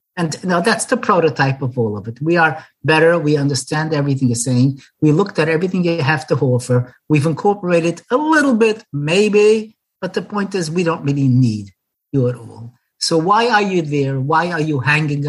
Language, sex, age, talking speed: English, male, 50-69, 200 wpm